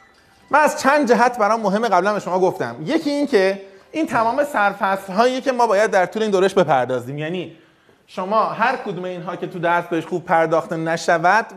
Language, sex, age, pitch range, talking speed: Persian, male, 30-49, 165-225 Hz, 190 wpm